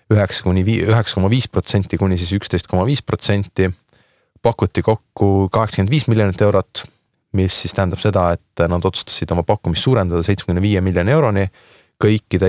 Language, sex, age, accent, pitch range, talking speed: English, male, 20-39, Finnish, 90-110 Hz, 110 wpm